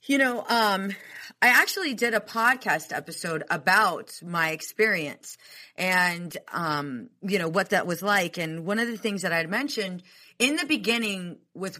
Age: 30-49